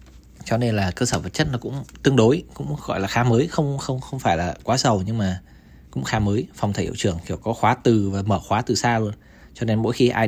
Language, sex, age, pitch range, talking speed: Vietnamese, male, 20-39, 70-115 Hz, 275 wpm